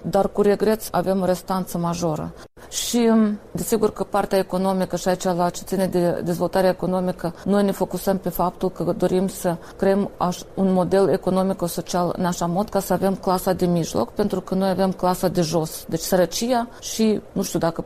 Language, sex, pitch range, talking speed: Romanian, female, 180-205 Hz, 180 wpm